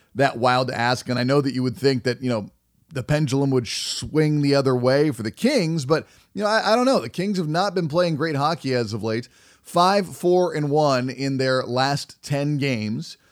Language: English